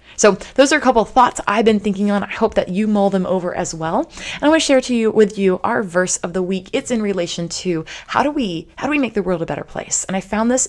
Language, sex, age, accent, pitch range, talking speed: English, female, 20-39, American, 170-245 Hz, 305 wpm